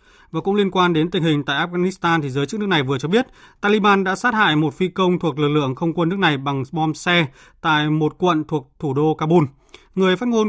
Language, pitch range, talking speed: Vietnamese, 150-185 Hz, 250 wpm